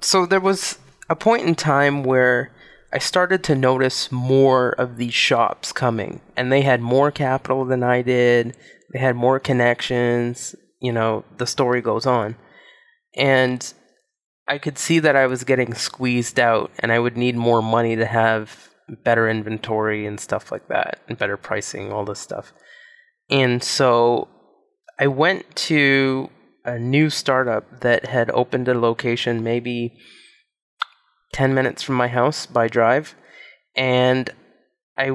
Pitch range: 115-135 Hz